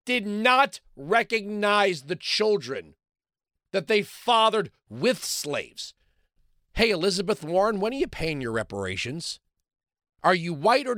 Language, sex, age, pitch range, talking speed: English, male, 40-59, 175-265 Hz, 125 wpm